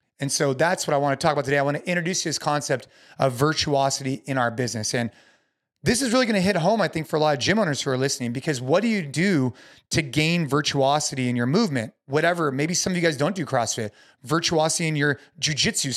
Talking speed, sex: 245 wpm, male